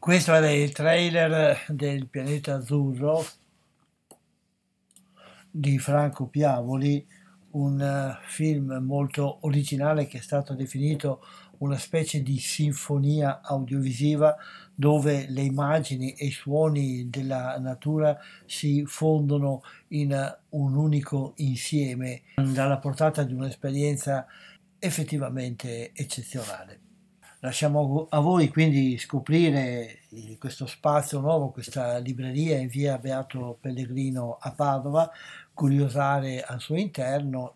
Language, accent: Italian, native